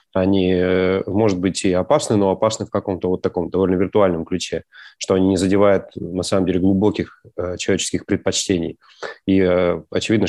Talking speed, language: 150 wpm, Russian